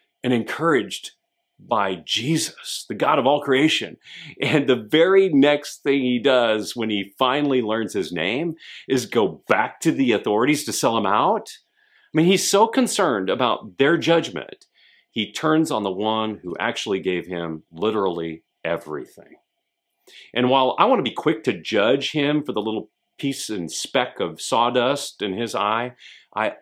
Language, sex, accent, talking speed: English, male, American, 165 wpm